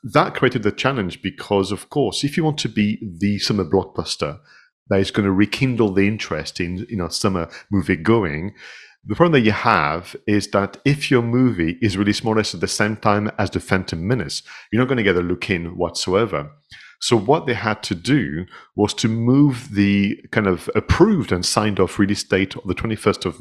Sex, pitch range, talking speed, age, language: male, 90-115 Hz, 210 wpm, 40-59, English